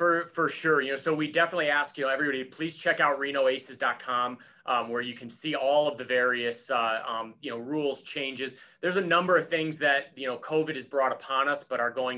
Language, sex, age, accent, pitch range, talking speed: English, male, 30-49, American, 120-140 Hz, 230 wpm